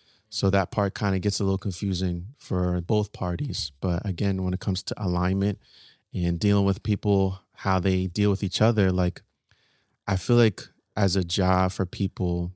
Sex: male